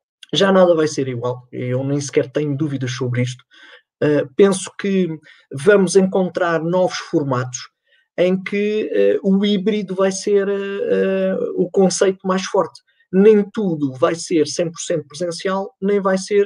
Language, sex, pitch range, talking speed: Portuguese, male, 145-200 Hz, 135 wpm